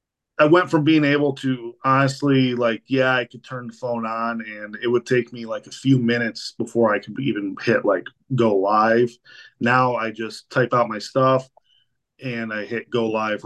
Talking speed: 195 wpm